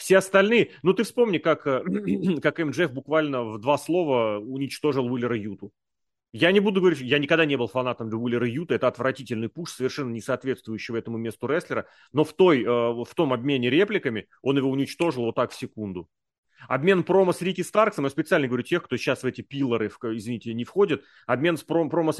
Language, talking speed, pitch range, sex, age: Russian, 190 wpm, 120-165 Hz, male, 30-49